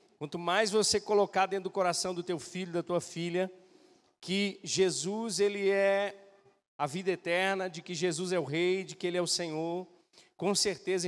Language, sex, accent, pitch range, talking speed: Portuguese, male, Brazilian, 175-215 Hz, 185 wpm